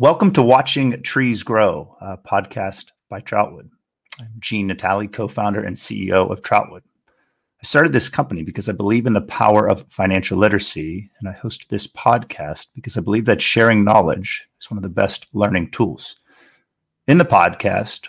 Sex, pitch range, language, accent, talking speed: male, 95-115 Hz, English, American, 170 wpm